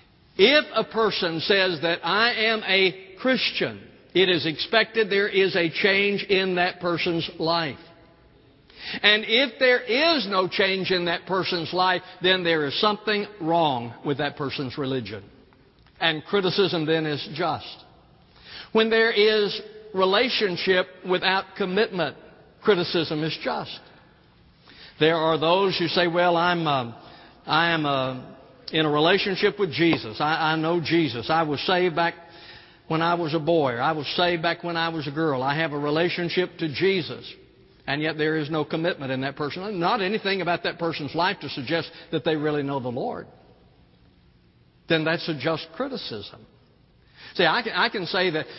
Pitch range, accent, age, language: 155-190 Hz, American, 60-79, English